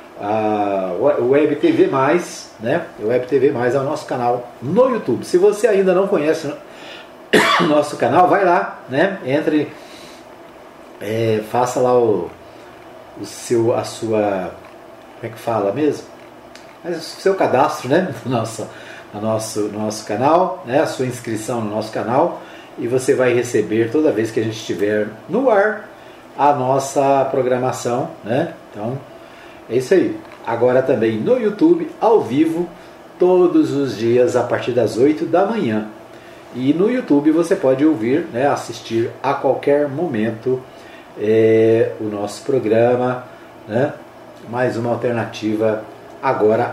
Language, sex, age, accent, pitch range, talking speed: Portuguese, male, 40-59, Brazilian, 115-170 Hz, 145 wpm